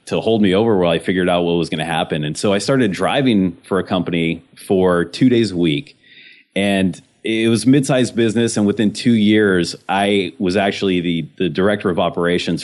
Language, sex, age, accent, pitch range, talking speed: English, male, 30-49, American, 80-105 Hz, 205 wpm